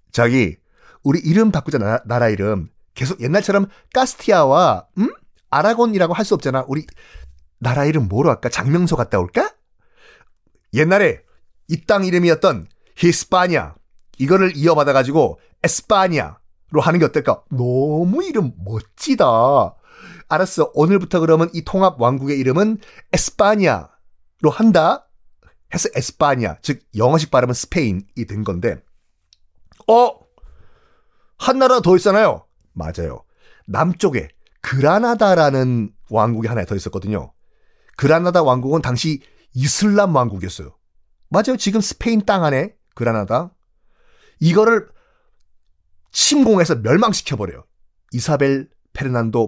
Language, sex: Korean, male